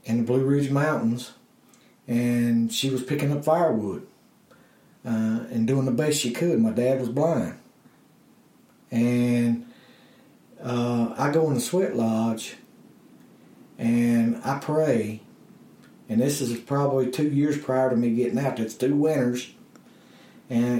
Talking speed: 140 wpm